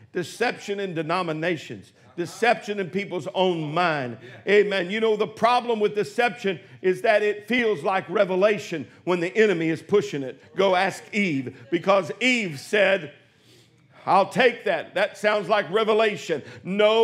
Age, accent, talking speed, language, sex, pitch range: 50-69, American, 145 wpm, English, male, 205-290 Hz